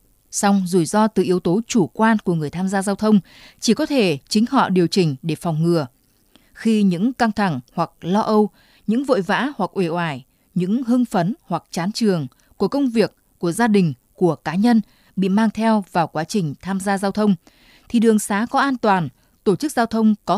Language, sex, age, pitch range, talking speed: Vietnamese, female, 20-39, 175-230 Hz, 215 wpm